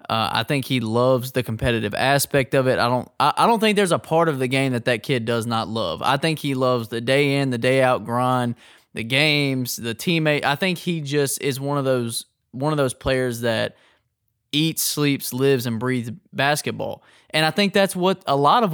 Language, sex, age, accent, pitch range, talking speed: English, male, 20-39, American, 115-145 Hz, 225 wpm